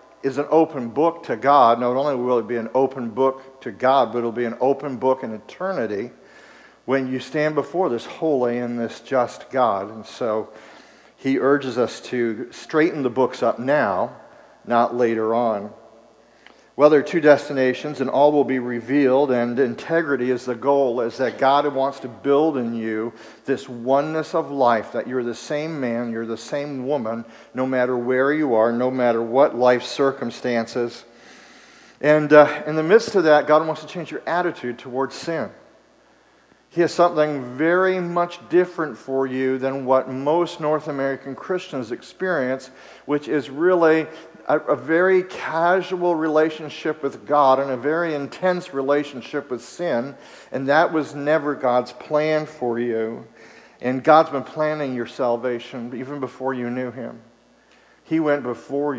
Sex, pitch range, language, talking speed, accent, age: male, 120-150 Hz, English, 165 wpm, American, 50-69